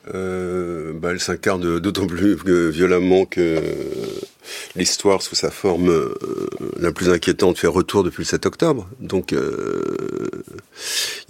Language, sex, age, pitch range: French, male, 50-69, 85-110 Hz